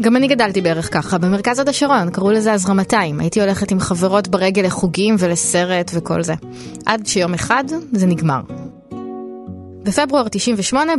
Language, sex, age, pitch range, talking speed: Hebrew, female, 20-39, 170-225 Hz, 155 wpm